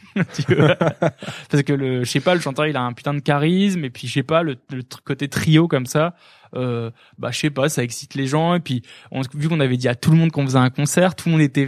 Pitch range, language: 125-160 Hz, French